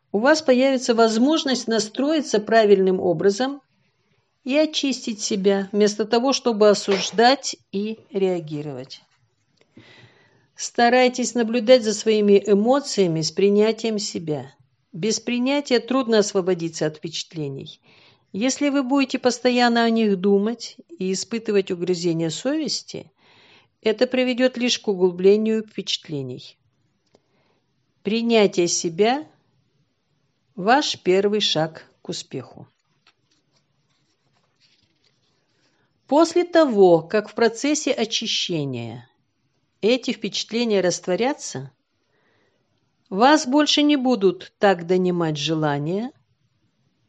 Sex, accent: female, native